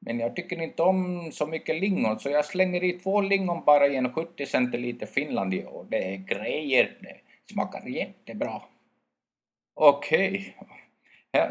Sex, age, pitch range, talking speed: male, 50-69, 160-235 Hz, 155 wpm